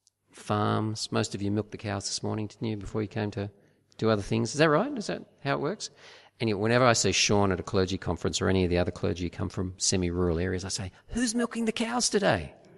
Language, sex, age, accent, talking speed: English, male, 40-59, Australian, 250 wpm